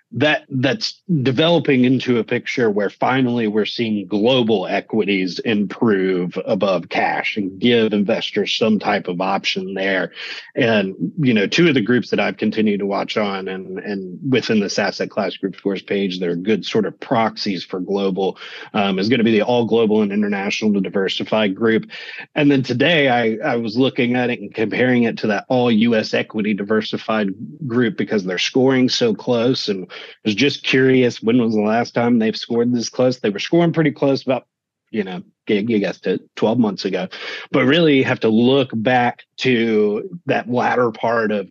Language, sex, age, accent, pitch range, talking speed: English, male, 30-49, American, 105-130 Hz, 185 wpm